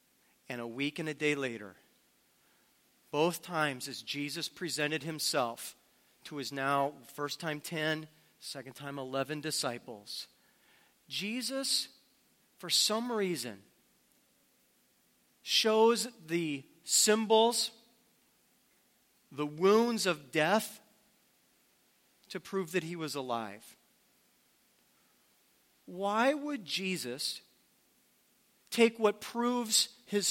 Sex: male